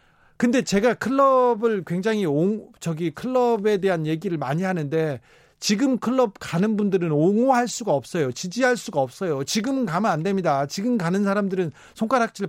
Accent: native